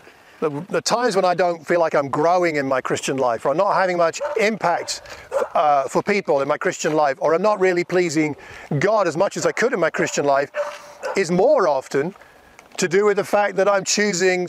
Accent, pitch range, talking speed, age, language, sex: British, 165-200 Hz, 220 wpm, 50-69, English, male